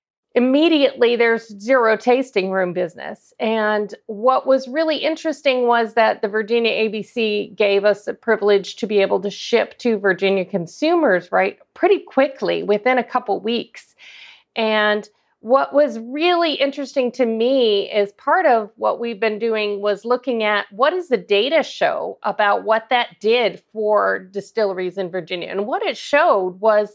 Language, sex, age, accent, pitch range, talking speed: English, female, 40-59, American, 205-265 Hz, 155 wpm